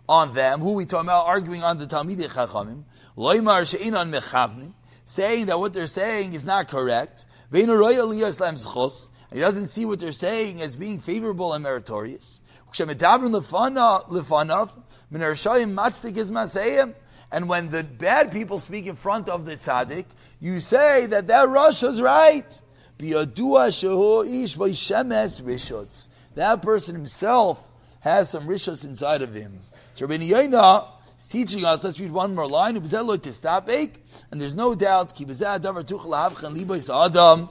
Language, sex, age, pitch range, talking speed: English, male, 40-59, 140-210 Hz, 110 wpm